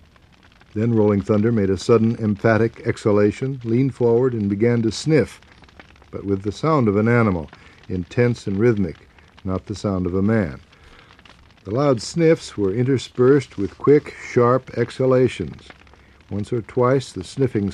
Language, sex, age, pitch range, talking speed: English, male, 60-79, 95-120 Hz, 150 wpm